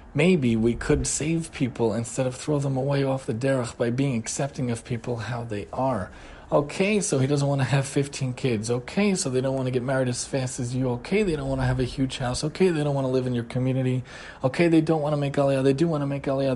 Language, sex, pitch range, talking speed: English, male, 115-145 Hz, 265 wpm